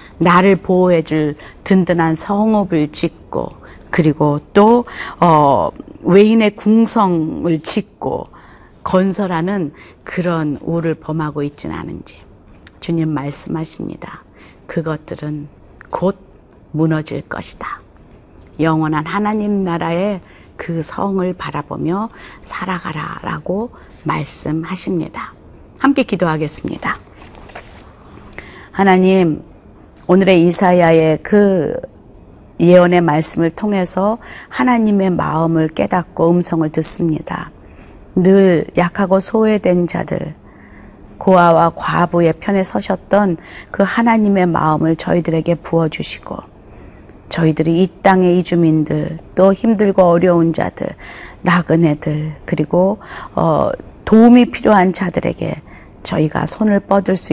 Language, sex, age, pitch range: Korean, female, 40-59, 155-190 Hz